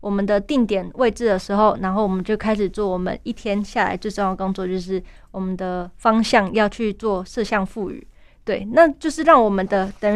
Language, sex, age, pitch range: Chinese, female, 20-39, 195-245 Hz